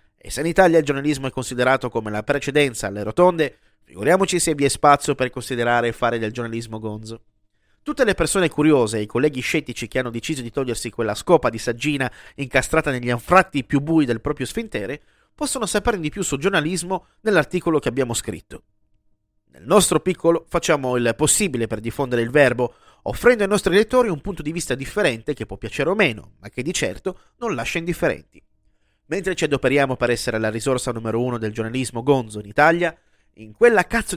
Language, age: Italian, 30-49